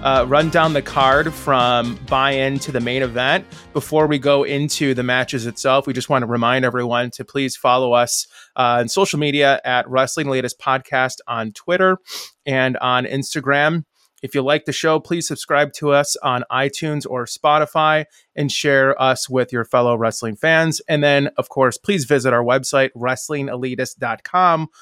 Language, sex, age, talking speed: English, male, 20-39, 170 wpm